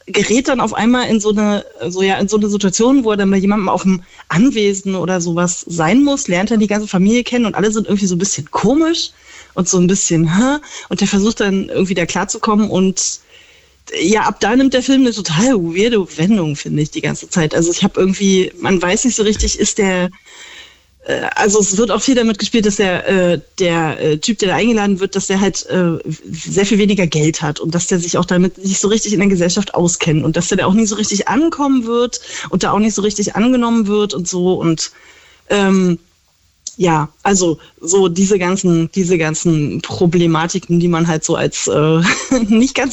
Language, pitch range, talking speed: German, 175-215 Hz, 215 wpm